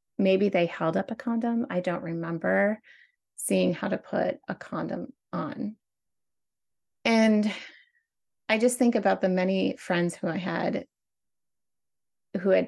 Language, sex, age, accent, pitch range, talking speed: English, female, 30-49, American, 175-220 Hz, 135 wpm